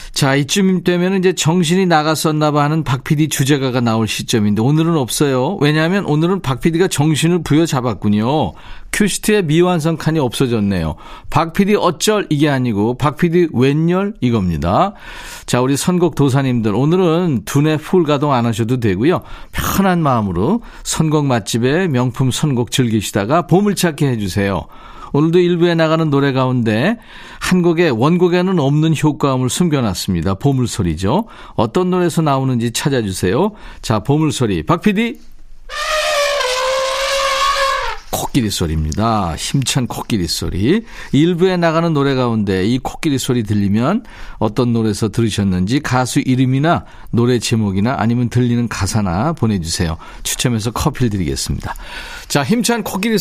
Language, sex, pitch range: Korean, male, 120-180 Hz